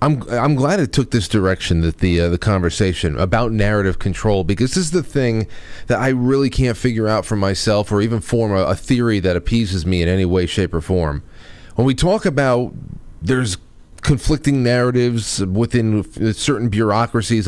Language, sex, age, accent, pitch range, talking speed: English, male, 30-49, American, 100-130 Hz, 180 wpm